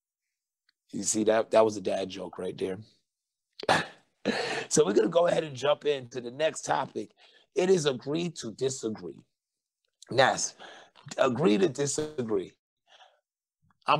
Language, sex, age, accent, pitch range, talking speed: English, male, 30-49, American, 110-135 Hz, 140 wpm